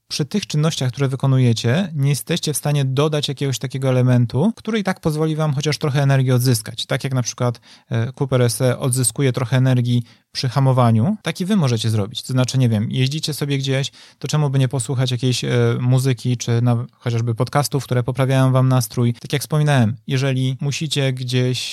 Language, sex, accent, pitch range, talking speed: Polish, male, native, 125-145 Hz, 175 wpm